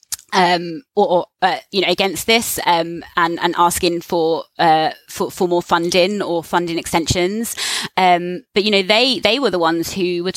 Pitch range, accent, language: 170-210 Hz, British, English